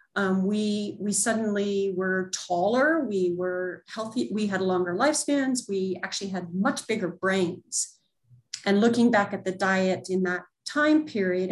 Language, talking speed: English, 150 wpm